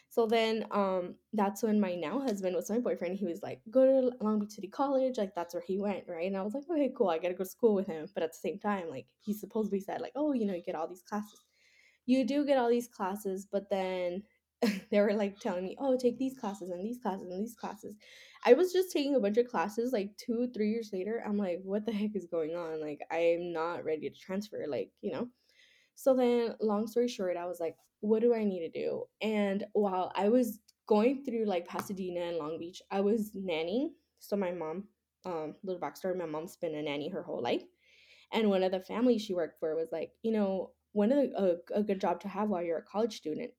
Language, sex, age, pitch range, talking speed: English, female, 10-29, 180-235 Hz, 250 wpm